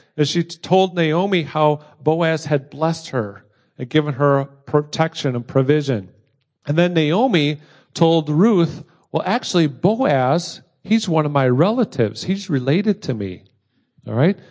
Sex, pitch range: male, 130-170 Hz